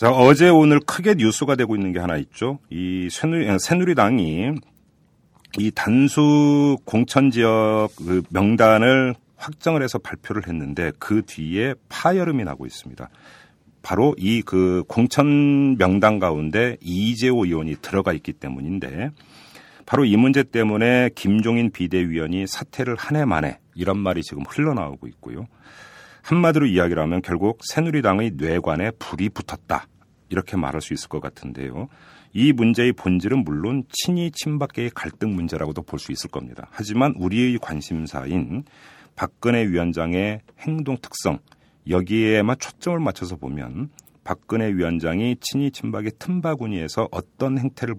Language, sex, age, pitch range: Korean, male, 40-59, 85-130 Hz